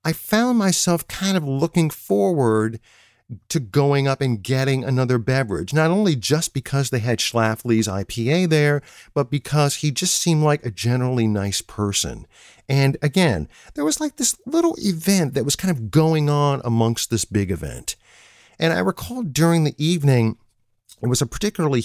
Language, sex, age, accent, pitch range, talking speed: English, male, 50-69, American, 115-160 Hz, 170 wpm